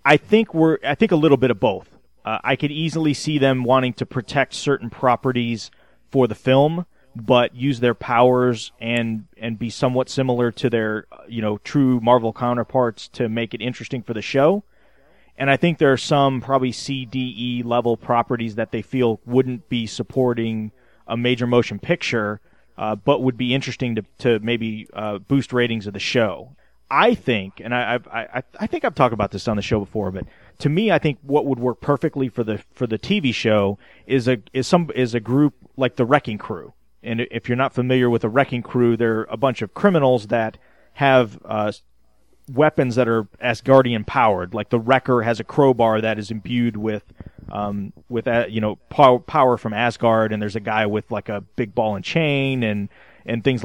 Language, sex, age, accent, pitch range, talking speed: English, male, 30-49, American, 110-130 Hz, 200 wpm